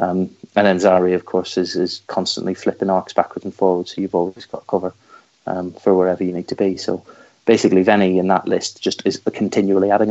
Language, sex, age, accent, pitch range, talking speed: English, male, 30-49, British, 95-110 Hz, 215 wpm